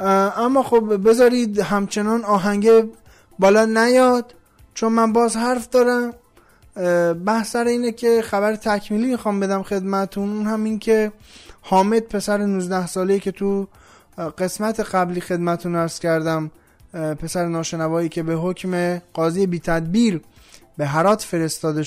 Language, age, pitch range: Persian, 20-39, 170-220 Hz